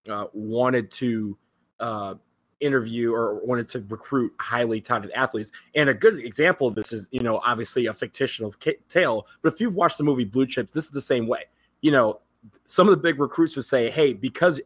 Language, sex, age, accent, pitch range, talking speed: English, male, 30-49, American, 115-160 Hz, 200 wpm